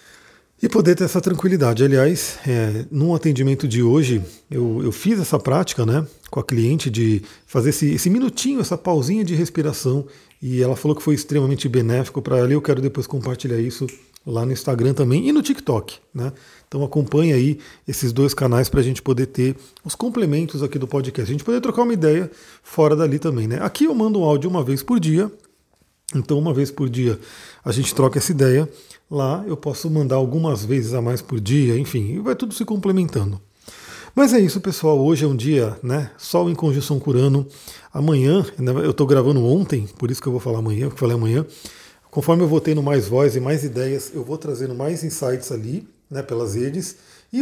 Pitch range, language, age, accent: 130-170 Hz, Portuguese, 40-59, Brazilian